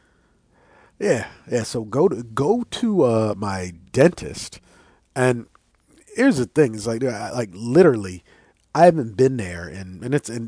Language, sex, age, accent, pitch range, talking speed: English, male, 40-59, American, 105-160 Hz, 160 wpm